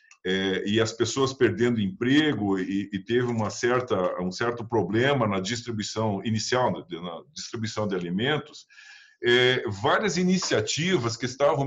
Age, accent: 50-69, Brazilian